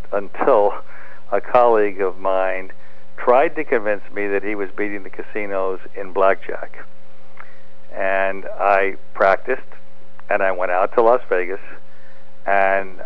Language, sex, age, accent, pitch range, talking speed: English, male, 60-79, American, 90-100 Hz, 130 wpm